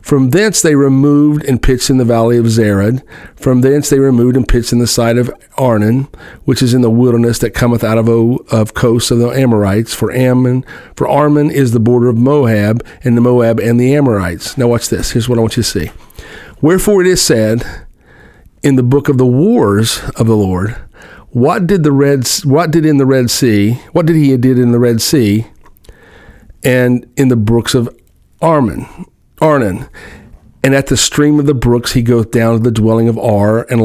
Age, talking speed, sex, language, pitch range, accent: 50-69, 205 wpm, male, English, 115-140 Hz, American